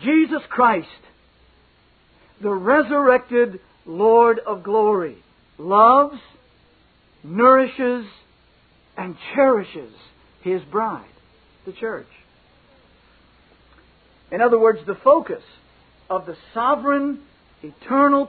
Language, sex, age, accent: English, male, 60-79, American